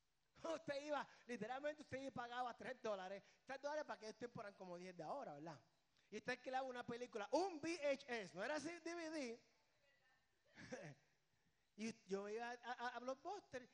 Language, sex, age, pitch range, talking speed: Spanish, male, 30-49, 195-265 Hz, 160 wpm